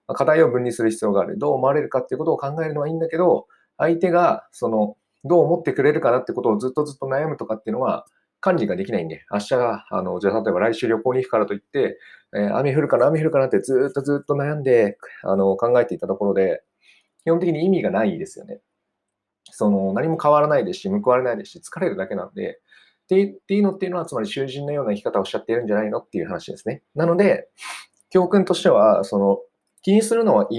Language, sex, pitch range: Japanese, male, 130-185 Hz